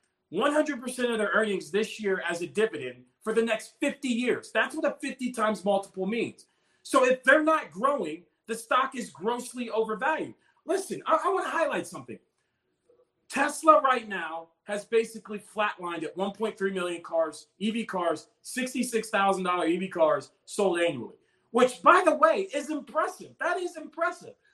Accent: American